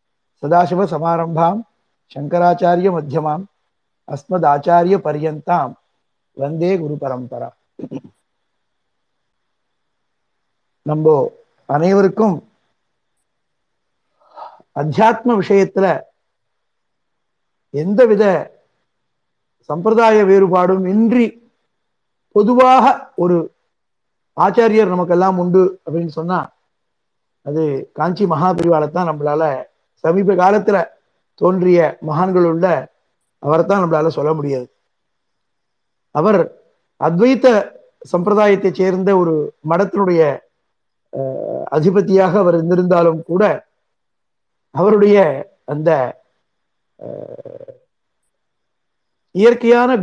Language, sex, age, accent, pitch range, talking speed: Tamil, male, 60-79, native, 160-205 Hz, 60 wpm